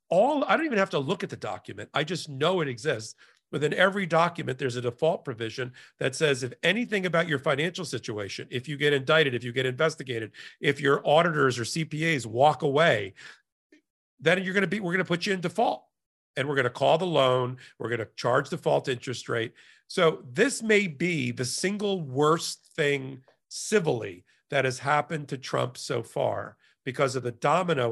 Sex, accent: male, American